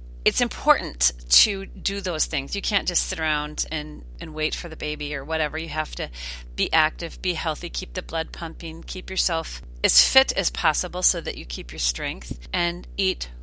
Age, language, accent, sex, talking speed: 40-59, English, American, female, 195 wpm